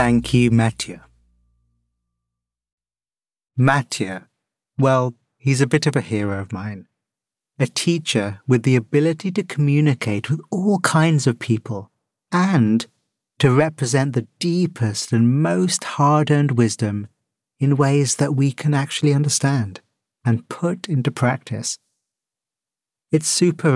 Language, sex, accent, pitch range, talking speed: English, male, British, 110-145 Hz, 120 wpm